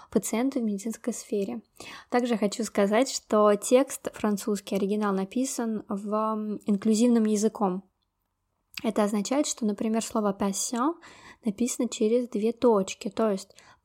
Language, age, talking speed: Russian, 20-39, 115 wpm